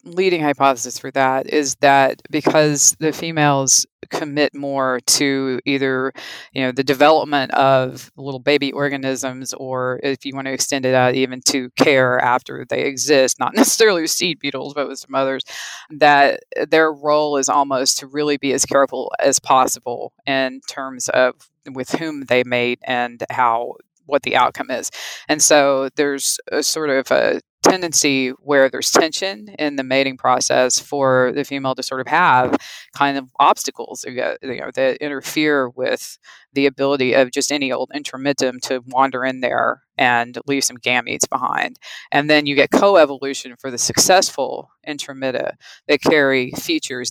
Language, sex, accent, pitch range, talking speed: English, female, American, 130-150 Hz, 160 wpm